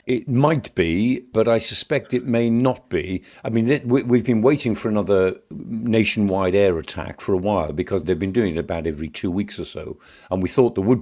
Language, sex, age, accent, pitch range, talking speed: English, male, 50-69, British, 90-115 Hz, 210 wpm